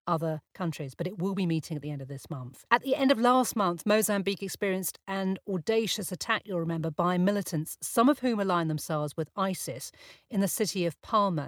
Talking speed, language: 210 wpm, English